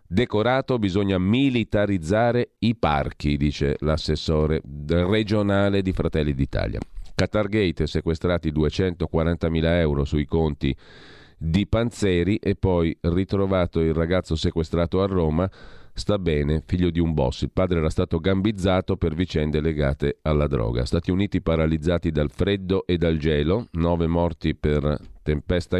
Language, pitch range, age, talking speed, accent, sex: Italian, 80-95 Hz, 40-59, 130 wpm, native, male